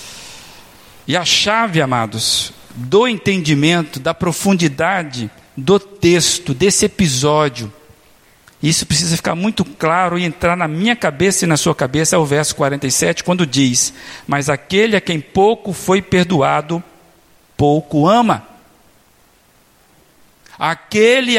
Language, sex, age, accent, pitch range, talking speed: Portuguese, male, 50-69, Brazilian, 175-270 Hz, 120 wpm